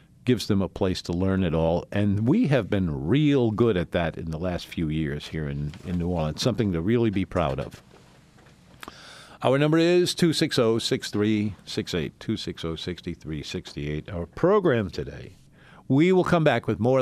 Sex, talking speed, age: male, 160 wpm, 50-69